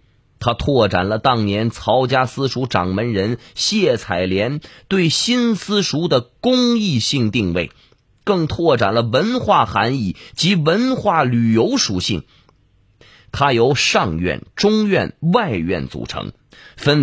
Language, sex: Chinese, male